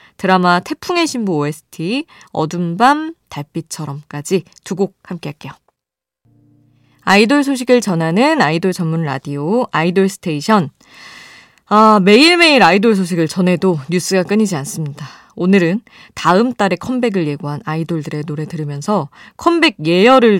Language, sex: Korean, female